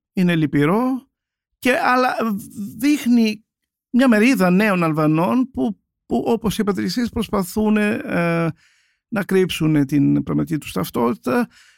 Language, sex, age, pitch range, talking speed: Greek, male, 50-69, 150-220 Hz, 95 wpm